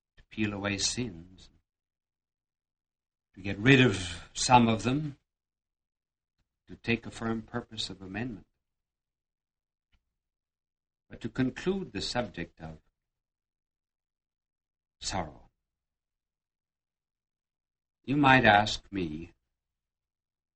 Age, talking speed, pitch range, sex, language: 60-79, 80 wpm, 70-110 Hz, male, English